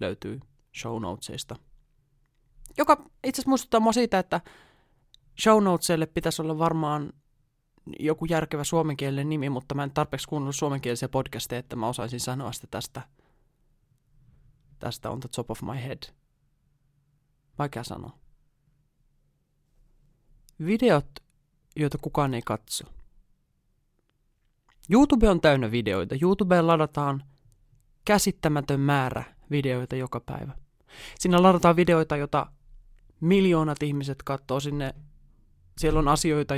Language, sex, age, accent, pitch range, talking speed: Finnish, male, 20-39, native, 130-155 Hz, 110 wpm